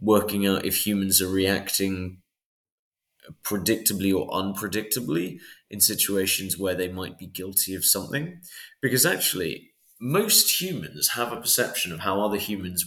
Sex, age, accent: male, 30-49, British